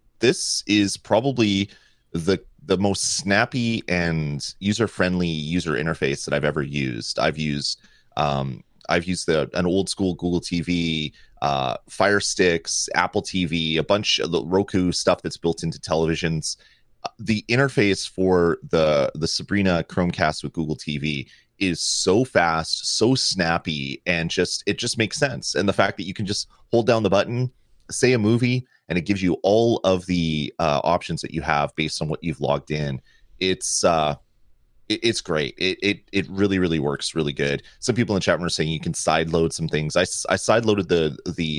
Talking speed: 180 wpm